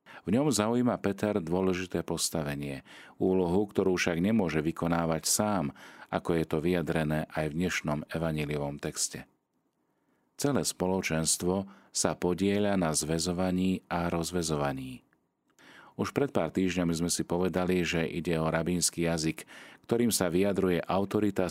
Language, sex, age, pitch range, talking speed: Slovak, male, 40-59, 80-100 Hz, 125 wpm